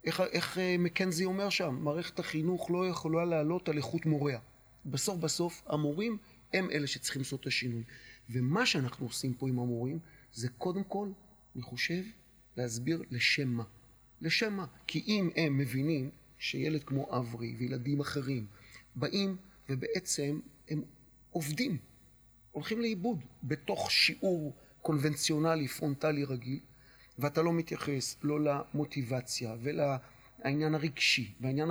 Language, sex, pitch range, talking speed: Hebrew, male, 130-175 Hz, 125 wpm